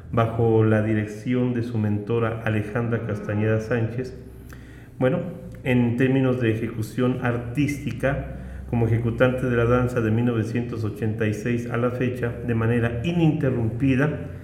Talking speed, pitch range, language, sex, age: 115 wpm, 110-130 Hz, Spanish, male, 40-59